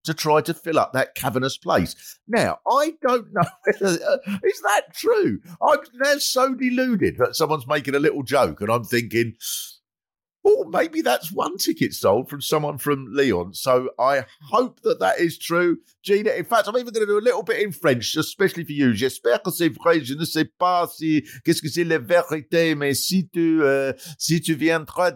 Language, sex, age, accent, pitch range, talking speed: English, male, 50-69, British, 135-220 Hz, 195 wpm